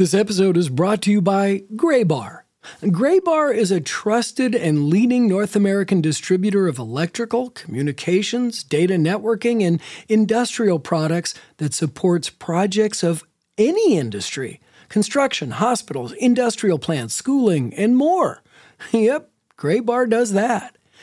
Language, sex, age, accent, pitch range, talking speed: English, male, 40-59, American, 155-220 Hz, 120 wpm